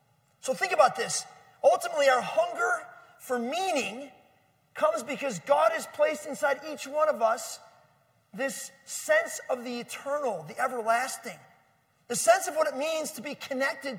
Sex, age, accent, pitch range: male, 40-59, American, 255-310 Hz